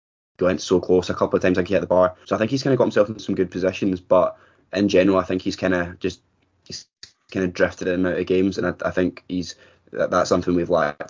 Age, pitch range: 10-29, 90-95 Hz